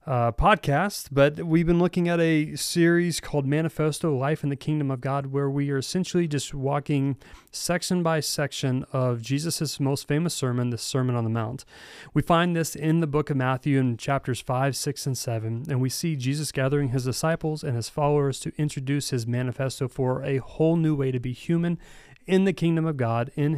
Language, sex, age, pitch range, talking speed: English, male, 30-49, 130-160 Hz, 200 wpm